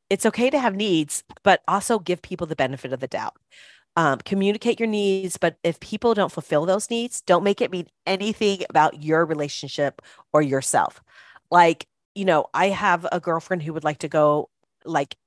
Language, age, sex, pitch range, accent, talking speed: English, 40-59, female, 140-180 Hz, American, 190 wpm